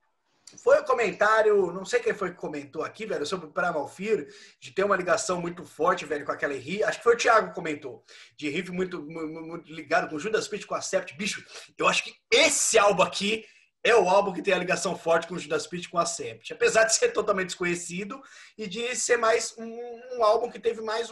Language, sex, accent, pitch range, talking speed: Portuguese, male, Brazilian, 175-225 Hz, 230 wpm